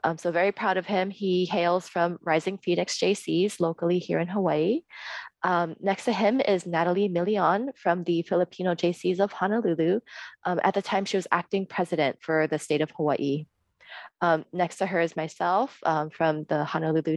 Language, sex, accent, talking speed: English, female, American, 180 wpm